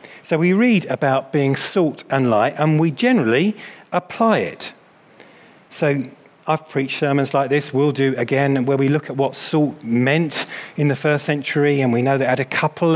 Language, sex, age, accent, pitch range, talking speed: English, male, 30-49, British, 135-160 Hz, 185 wpm